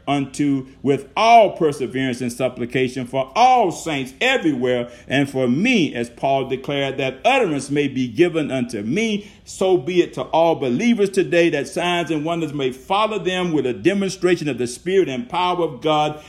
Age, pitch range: 50-69, 130-170 Hz